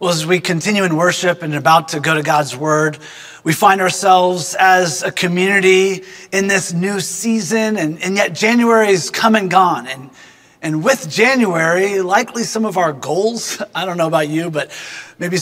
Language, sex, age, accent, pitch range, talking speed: English, male, 30-49, American, 175-215 Hz, 175 wpm